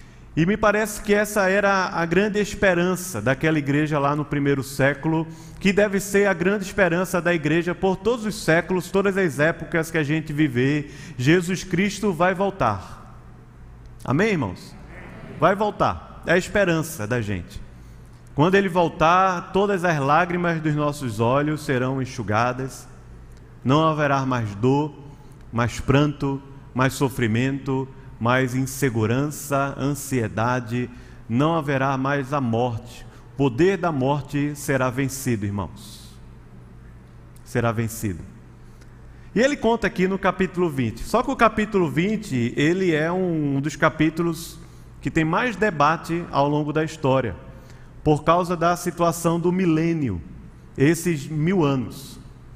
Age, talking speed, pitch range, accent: 30-49, 135 wpm, 125-175 Hz, Brazilian